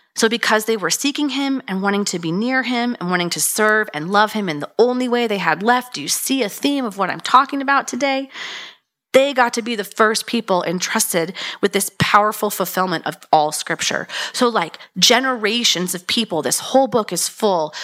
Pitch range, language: 175-235 Hz, English